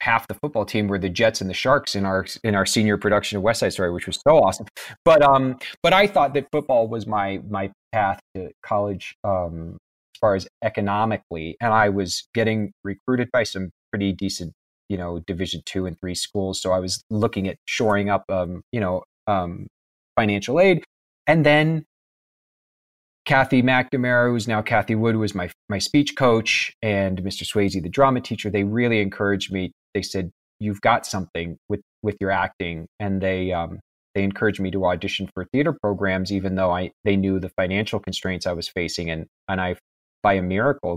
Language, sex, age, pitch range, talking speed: English, male, 30-49, 95-115 Hz, 195 wpm